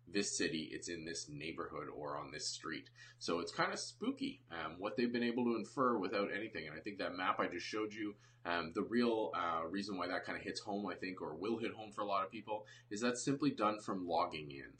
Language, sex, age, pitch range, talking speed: English, male, 20-39, 85-120 Hz, 250 wpm